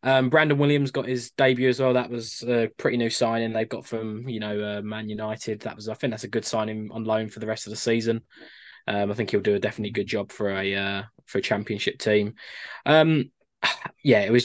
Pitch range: 110-130 Hz